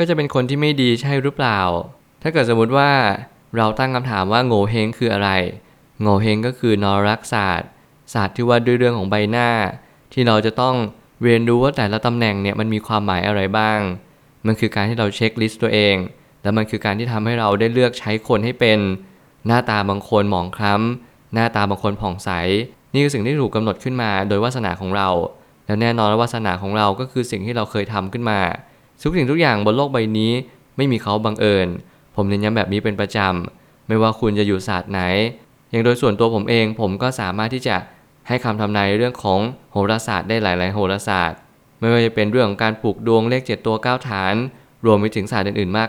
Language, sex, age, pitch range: Thai, male, 20-39, 105-125 Hz